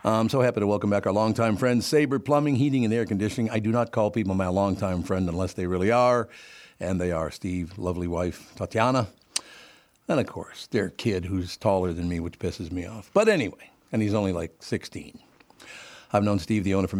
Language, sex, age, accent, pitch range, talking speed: English, male, 50-69, American, 95-125 Hz, 210 wpm